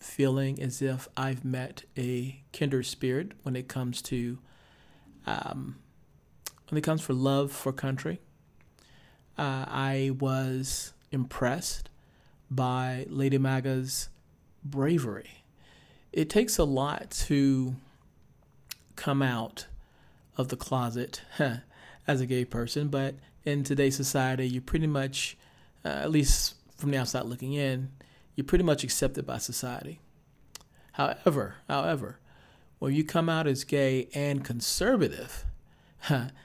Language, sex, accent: English, male, American